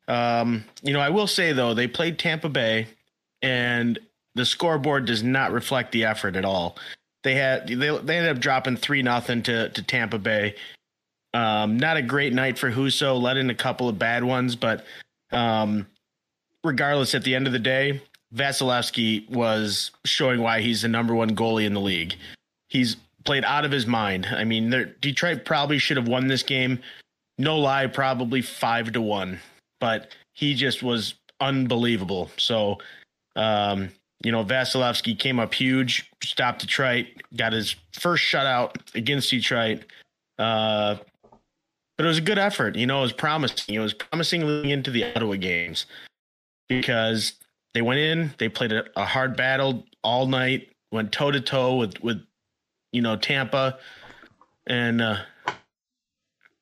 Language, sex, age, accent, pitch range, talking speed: English, male, 30-49, American, 110-135 Hz, 160 wpm